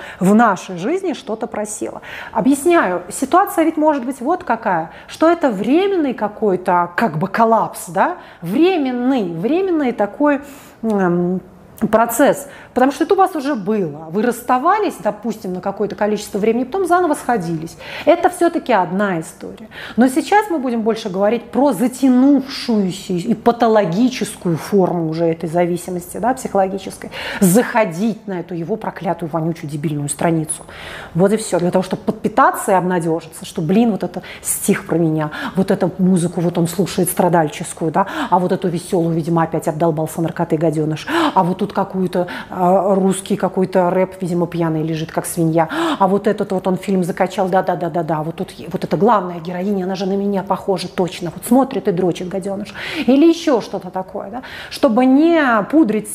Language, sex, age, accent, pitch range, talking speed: Russian, female, 30-49, native, 180-250 Hz, 155 wpm